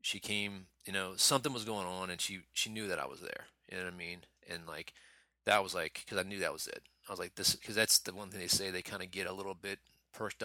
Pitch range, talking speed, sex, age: 90-100 Hz, 295 wpm, male, 30-49